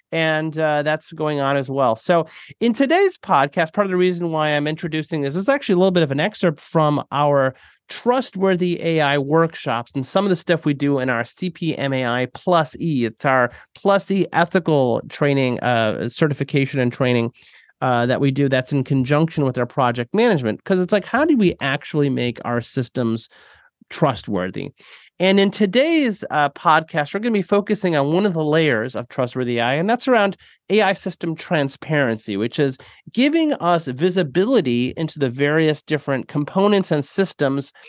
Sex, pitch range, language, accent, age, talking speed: male, 130-180 Hz, English, American, 30-49, 180 wpm